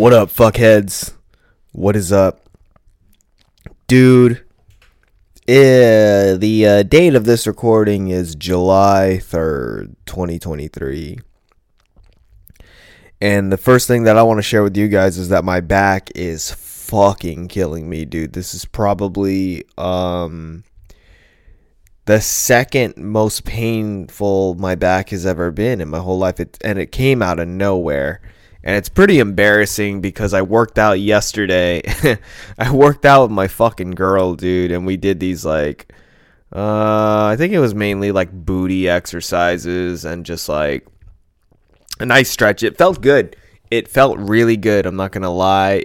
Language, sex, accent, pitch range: English, male, American, 90-110 Hz